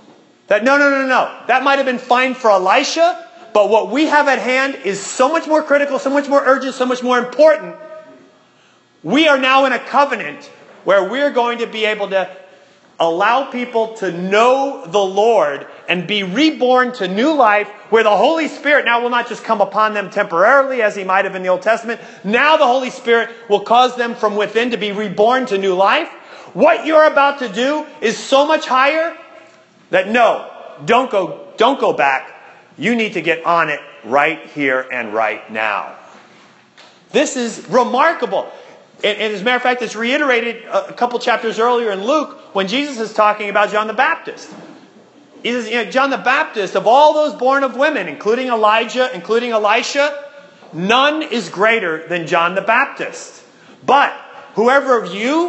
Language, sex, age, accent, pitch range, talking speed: English, male, 40-59, American, 210-275 Hz, 185 wpm